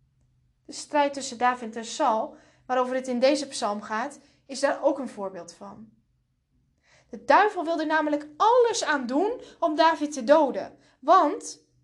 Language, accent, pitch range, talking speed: Dutch, Dutch, 200-300 Hz, 150 wpm